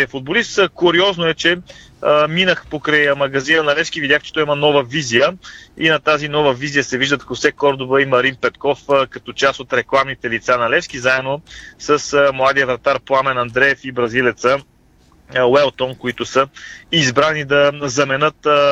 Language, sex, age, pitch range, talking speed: Bulgarian, male, 30-49, 125-150 Hz, 165 wpm